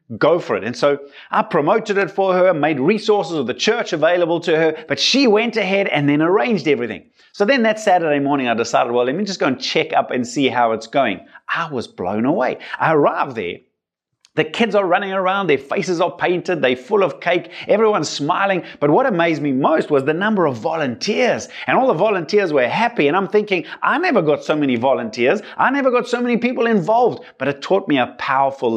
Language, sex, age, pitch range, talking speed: English, male, 30-49, 135-200 Hz, 220 wpm